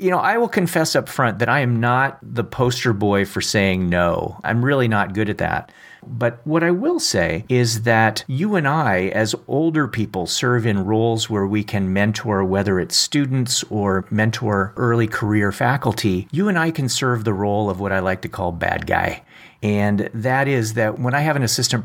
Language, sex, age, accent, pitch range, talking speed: English, male, 40-59, American, 105-135 Hz, 205 wpm